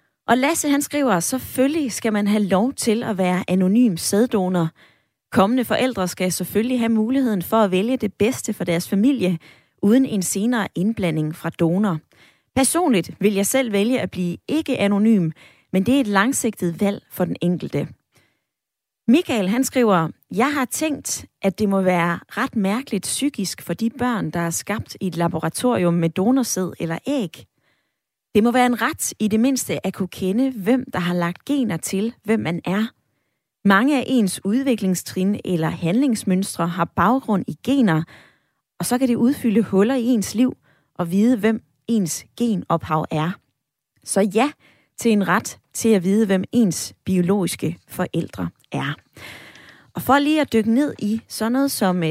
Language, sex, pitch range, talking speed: Danish, female, 180-245 Hz, 170 wpm